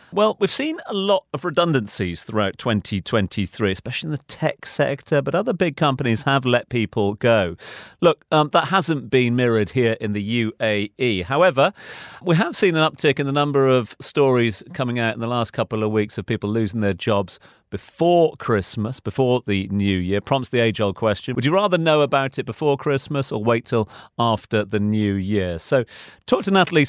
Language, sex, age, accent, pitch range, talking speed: English, male, 40-59, British, 105-140 Hz, 190 wpm